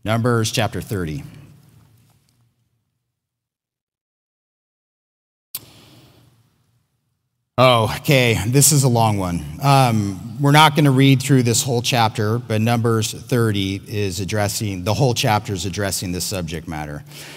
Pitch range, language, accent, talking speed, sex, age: 115-145 Hz, English, American, 110 wpm, male, 40-59